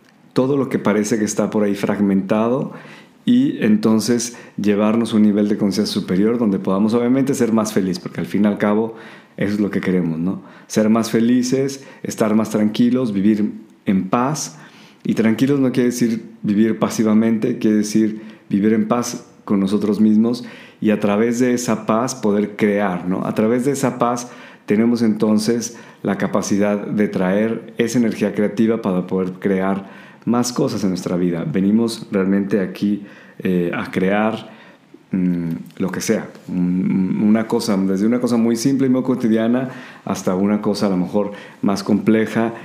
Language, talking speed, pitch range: Spanish, 165 wpm, 100-120 Hz